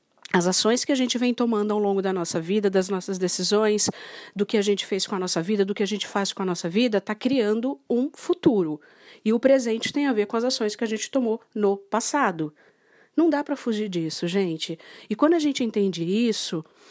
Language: Portuguese